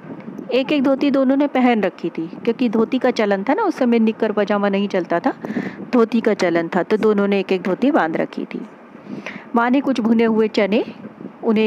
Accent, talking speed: native, 215 wpm